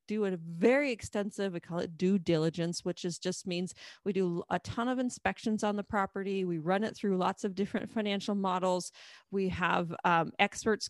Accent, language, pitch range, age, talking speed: American, English, 180-205 Hz, 30-49, 195 wpm